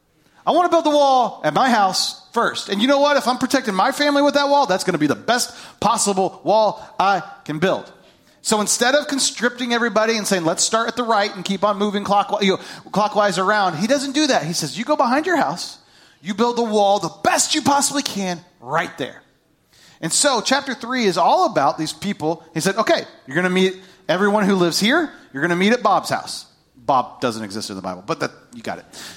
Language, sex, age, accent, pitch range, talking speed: English, male, 30-49, American, 175-245 Hz, 230 wpm